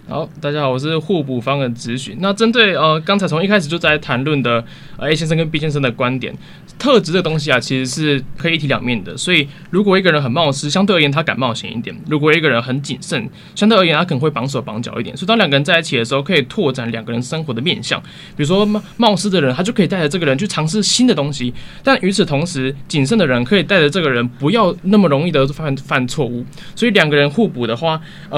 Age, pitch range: 20-39, 135-185 Hz